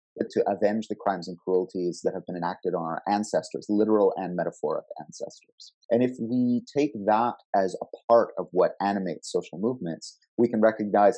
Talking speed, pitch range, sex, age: 175 wpm, 90-115 Hz, male, 30-49